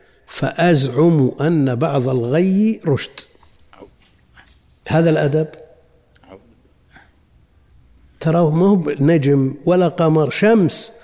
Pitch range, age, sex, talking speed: 110-155 Hz, 60-79, male, 75 wpm